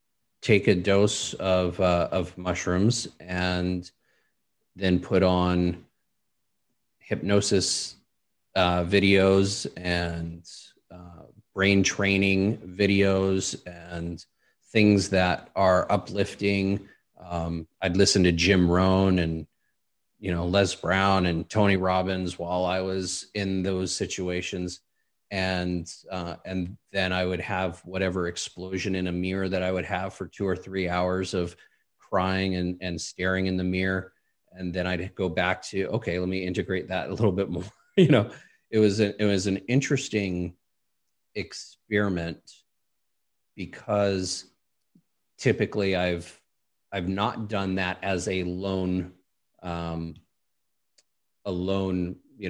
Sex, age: male, 30-49